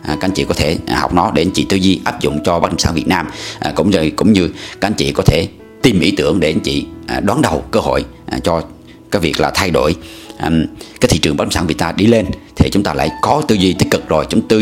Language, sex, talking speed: Vietnamese, male, 275 wpm